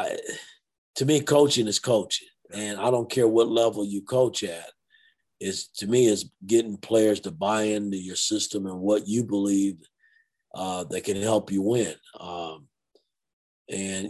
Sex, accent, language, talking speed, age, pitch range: male, American, English, 160 wpm, 50-69, 100-120 Hz